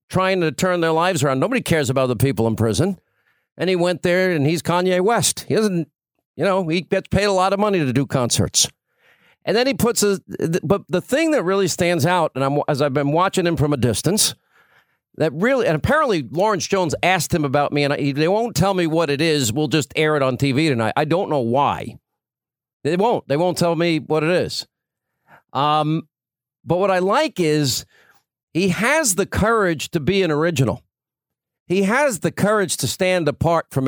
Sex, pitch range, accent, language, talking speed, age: male, 145-185 Hz, American, English, 210 wpm, 50-69